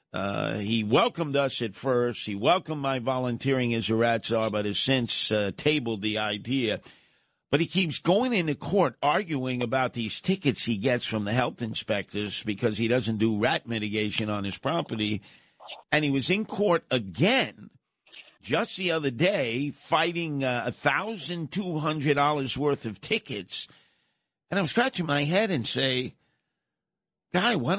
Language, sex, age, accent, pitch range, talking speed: English, male, 50-69, American, 115-160 Hz, 155 wpm